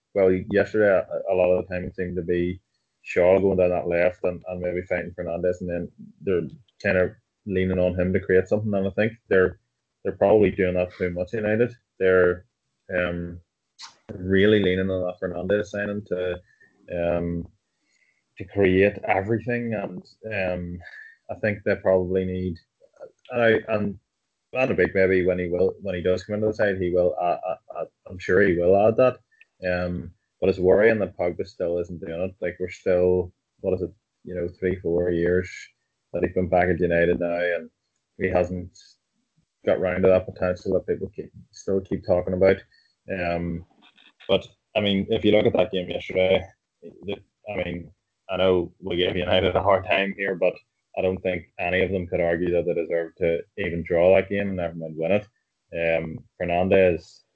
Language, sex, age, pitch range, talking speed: English, male, 20-39, 90-100 Hz, 185 wpm